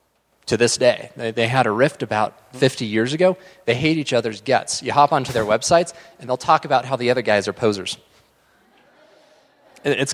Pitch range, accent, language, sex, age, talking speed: 115-150 Hz, American, English, male, 30-49, 190 wpm